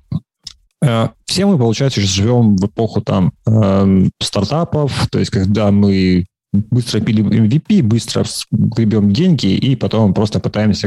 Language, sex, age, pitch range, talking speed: Russian, male, 30-49, 100-130 Hz, 120 wpm